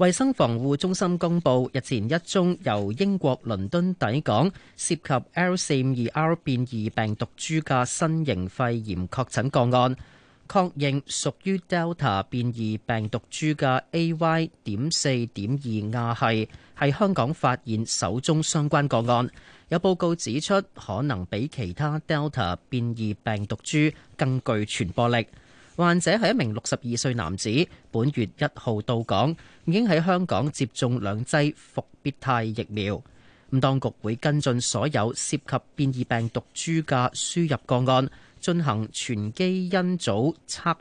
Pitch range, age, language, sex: 115-160 Hz, 30-49, Chinese, male